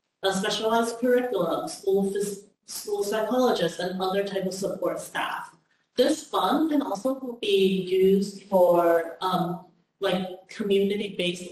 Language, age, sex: English, 30-49, female